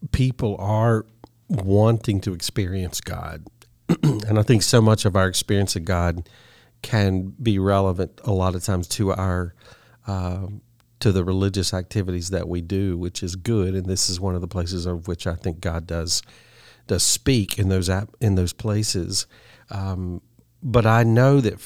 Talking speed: 170 wpm